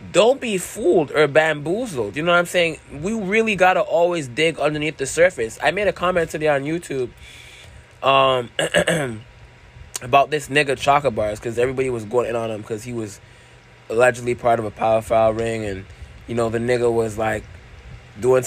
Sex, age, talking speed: male, 20-39, 185 wpm